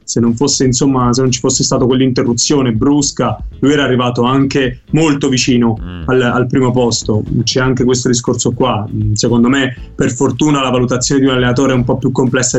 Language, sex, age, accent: Italian, male, 20-39, native